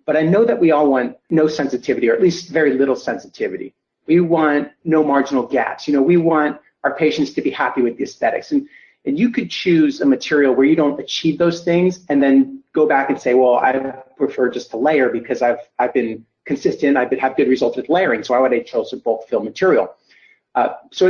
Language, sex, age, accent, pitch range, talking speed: English, male, 30-49, American, 130-175 Hz, 220 wpm